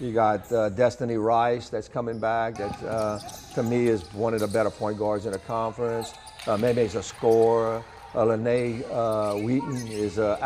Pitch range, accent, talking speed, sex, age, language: 105-120 Hz, American, 190 wpm, male, 60-79, English